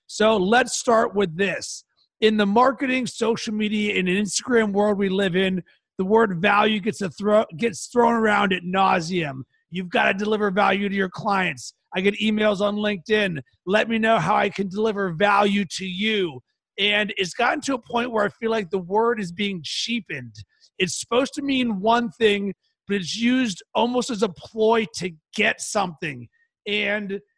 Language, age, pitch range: English, 30-49, 195-230 Hz